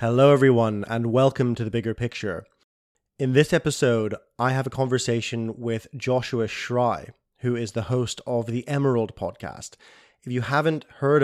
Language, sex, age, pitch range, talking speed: English, male, 20-39, 115-130 Hz, 160 wpm